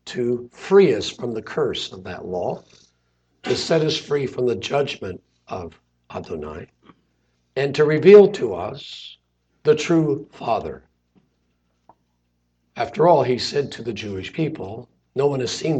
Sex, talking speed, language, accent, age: male, 145 wpm, English, American, 60-79